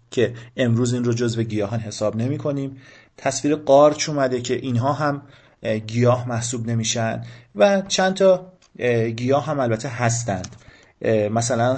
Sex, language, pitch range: male, Persian, 115-145 Hz